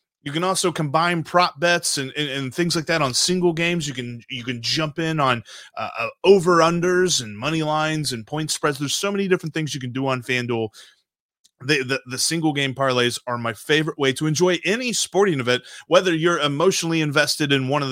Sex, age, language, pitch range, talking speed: male, 30-49, English, 130-175 Hz, 210 wpm